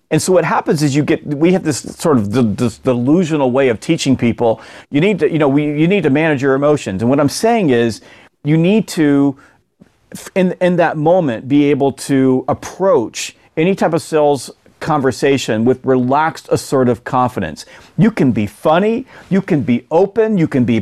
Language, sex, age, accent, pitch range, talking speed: English, male, 40-59, American, 140-190 Hz, 195 wpm